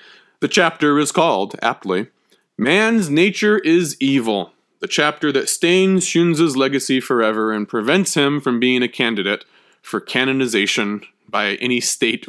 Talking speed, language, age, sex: 135 wpm, English, 20-39, male